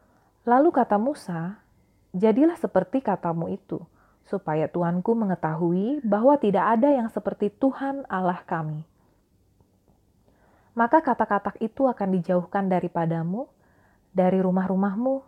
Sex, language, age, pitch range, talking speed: female, Indonesian, 30-49, 180-245 Hz, 100 wpm